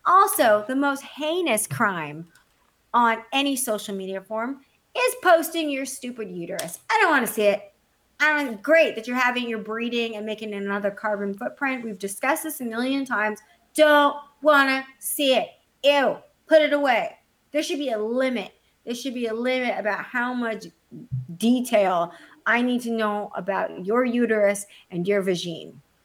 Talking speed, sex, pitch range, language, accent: 165 wpm, female, 210-280 Hz, English, American